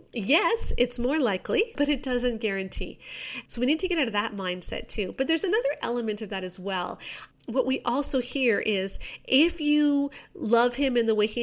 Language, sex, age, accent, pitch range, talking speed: English, female, 40-59, American, 205-270 Hz, 205 wpm